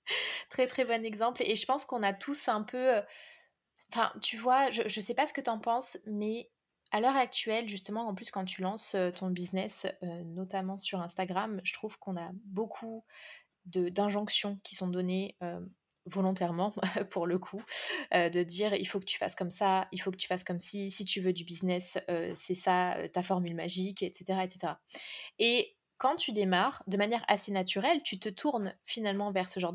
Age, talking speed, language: 20-39, 200 wpm, French